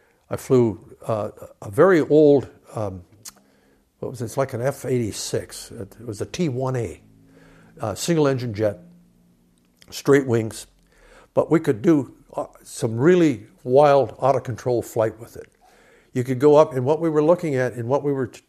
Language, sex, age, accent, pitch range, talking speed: English, male, 60-79, American, 115-145 Hz, 160 wpm